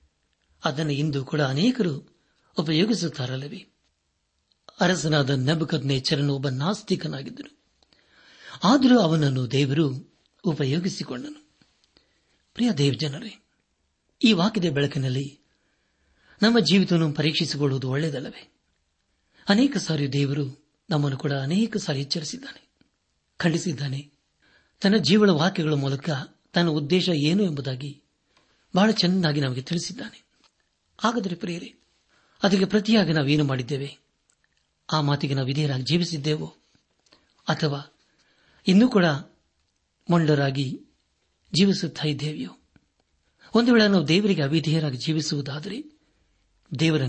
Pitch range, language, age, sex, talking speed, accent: 140-190 Hz, Kannada, 60-79, male, 85 wpm, native